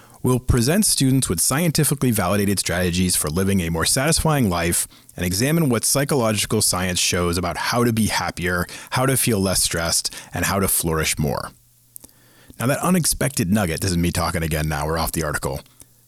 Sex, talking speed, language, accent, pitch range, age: male, 175 wpm, English, American, 95-130 Hz, 40-59